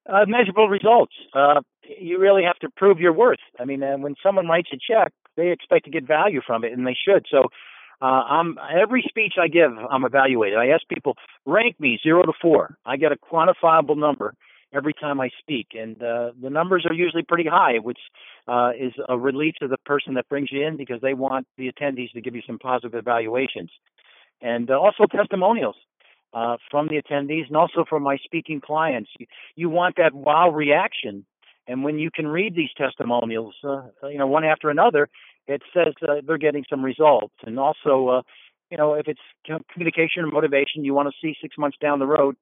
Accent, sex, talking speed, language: American, male, 200 wpm, English